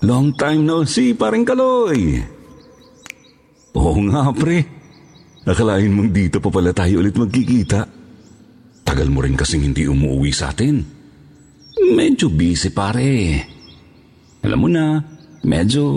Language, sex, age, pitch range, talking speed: Filipino, male, 50-69, 85-135 Hz, 125 wpm